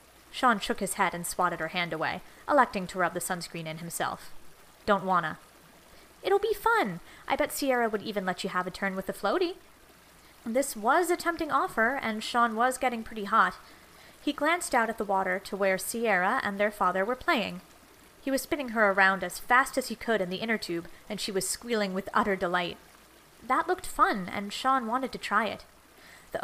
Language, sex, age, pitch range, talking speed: English, female, 20-39, 185-255 Hz, 205 wpm